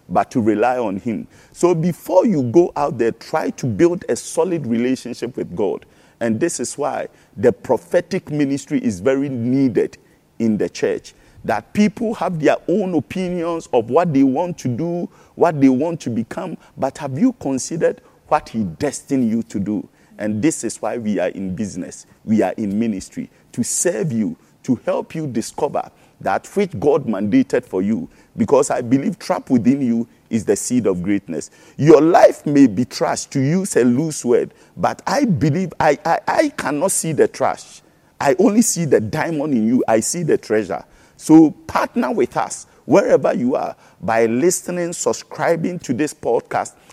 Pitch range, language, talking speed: 125-185 Hz, English, 180 wpm